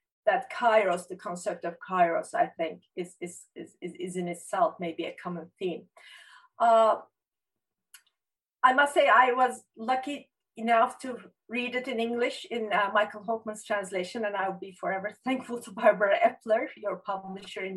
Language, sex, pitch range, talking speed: Turkish, female, 190-255 Hz, 160 wpm